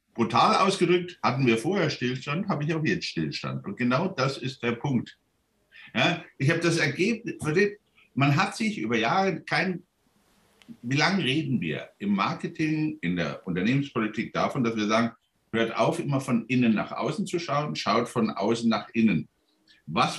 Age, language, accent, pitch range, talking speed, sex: 60-79, German, German, 125-175 Hz, 165 wpm, male